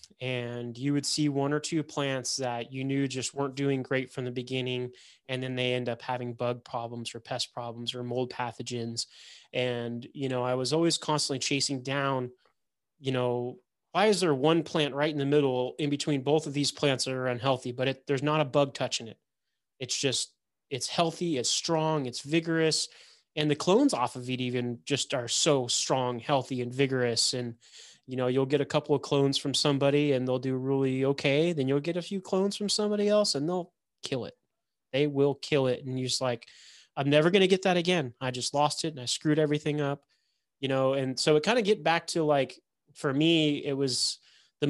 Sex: male